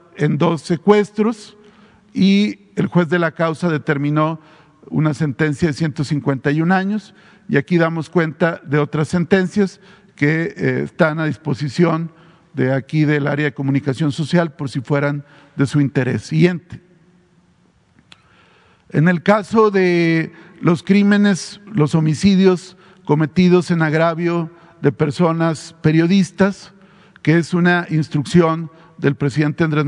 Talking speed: 125 wpm